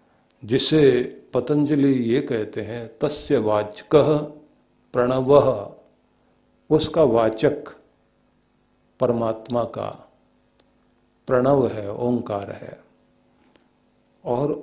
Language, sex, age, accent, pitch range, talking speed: Hindi, male, 60-79, native, 115-150 Hz, 70 wpm